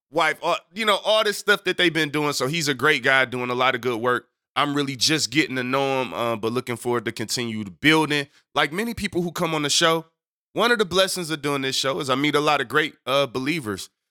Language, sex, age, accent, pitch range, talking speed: English, male, 20-39, American, 120-150 Hz, 260 wpm